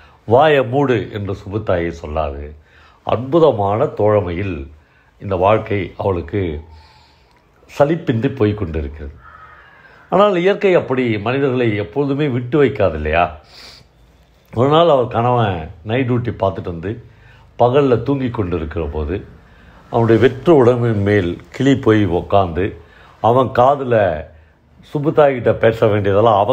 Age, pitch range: 60-79, 85-130 Hz